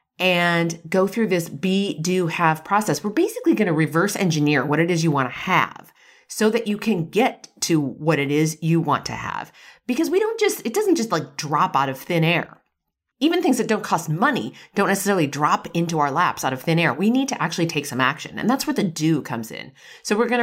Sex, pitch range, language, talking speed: female, 155-230 Hz, English, 235 wpm